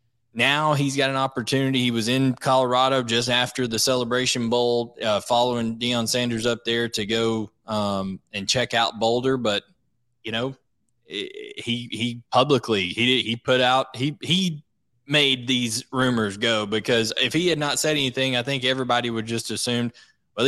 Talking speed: 165 wpm